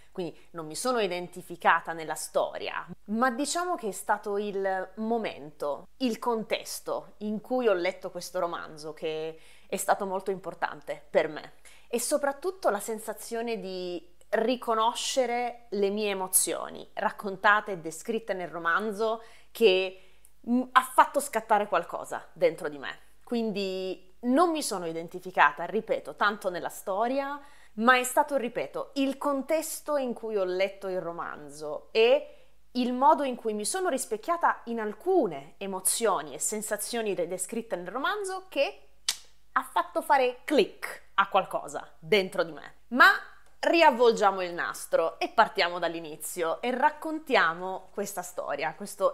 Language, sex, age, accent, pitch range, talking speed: Italian, female, 20-39, native, 185-260 Hz, 135 wpm